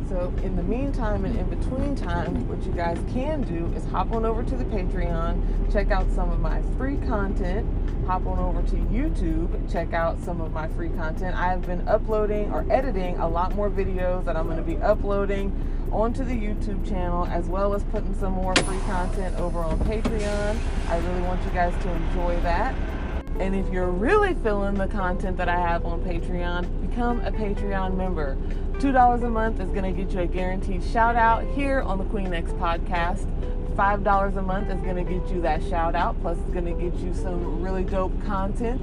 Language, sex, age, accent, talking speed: English, female, 30-49, American, 200 wpm